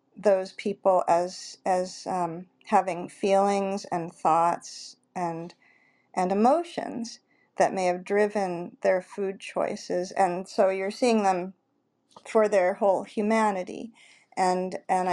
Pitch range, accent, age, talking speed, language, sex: 190-230 Hz, American, 50-69, 120 wpm, English, female